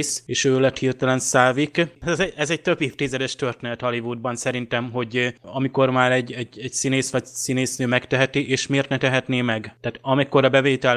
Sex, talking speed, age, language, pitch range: male, 180 wpm, 20-39, Hungarian, 120-135 Hz